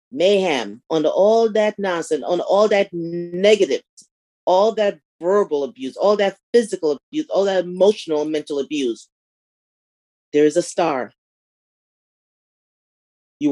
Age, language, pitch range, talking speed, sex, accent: 40-59, English, 135-200 Hz, 120 wpm, female, American